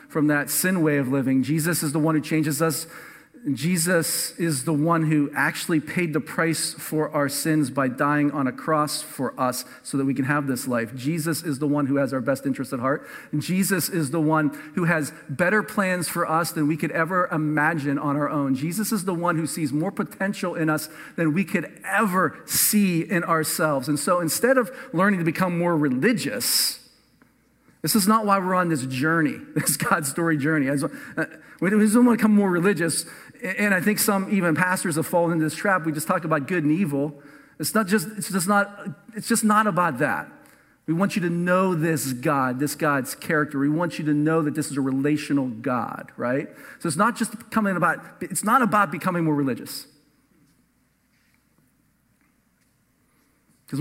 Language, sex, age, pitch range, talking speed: English, male, 40-59, 150-185 Hz, 200 wpm